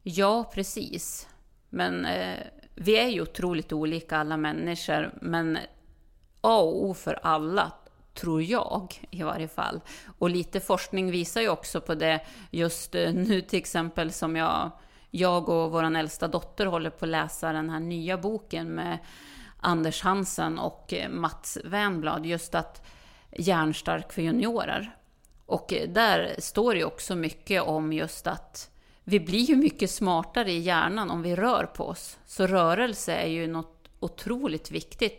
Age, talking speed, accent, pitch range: 30-49, 155 wpm, Swedish, 160-195 Hz